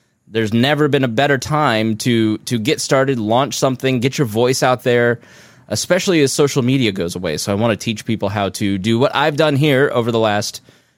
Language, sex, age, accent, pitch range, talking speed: English, male, 20-39, American, 105-140 Hz, 215 wpm